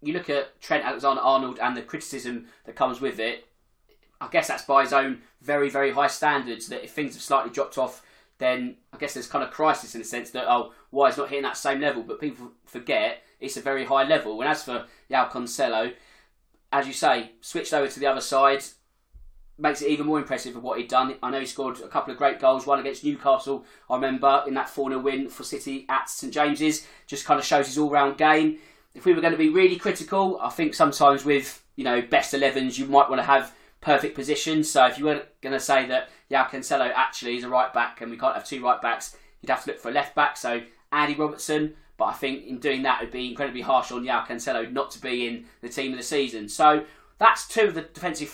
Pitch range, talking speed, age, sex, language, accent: 135-165 Hz, 240 wpm, 20-39, male, English, British